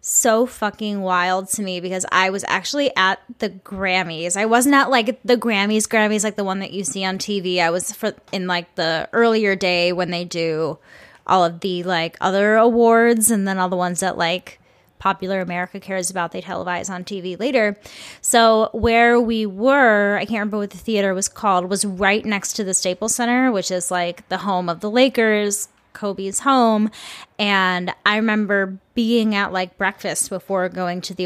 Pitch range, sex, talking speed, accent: 185-225 Hz, female, 190 wpm, American